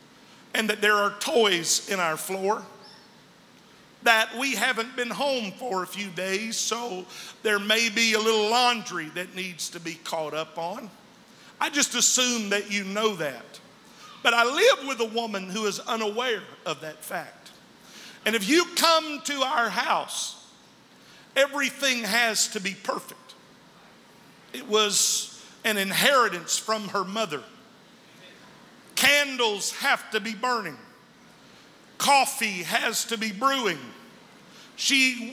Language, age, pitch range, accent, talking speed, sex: English, 50-69, 205-250 Hz, American, 135 wpm, male